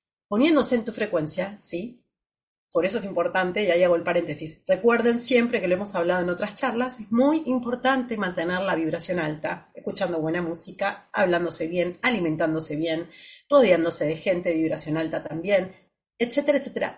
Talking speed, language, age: 160 wpm, Spanish, 40-59